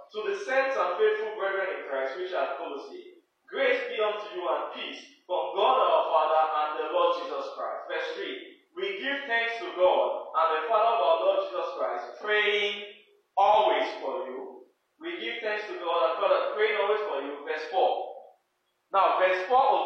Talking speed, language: 185 wpm, English